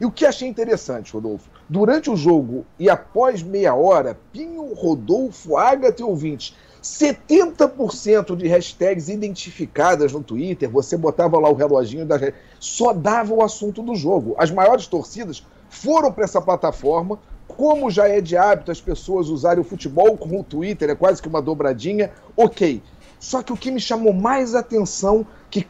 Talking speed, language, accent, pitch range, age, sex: 165 wpm, Portuguese, Brazilian, 175-235 Hz, 40-59, male